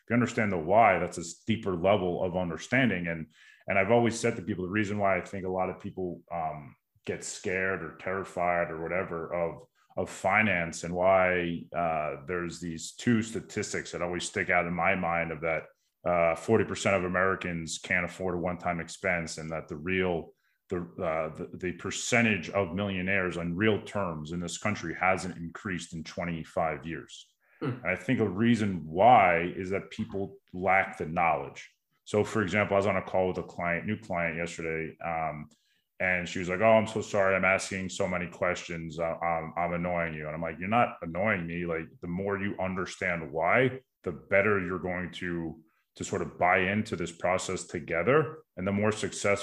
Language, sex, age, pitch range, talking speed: English, male, 30-49, 85-100 Hz, 190 wpm